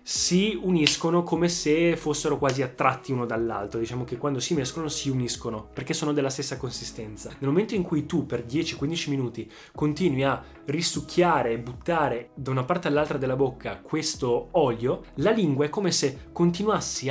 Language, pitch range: Italian, 125-165 Hz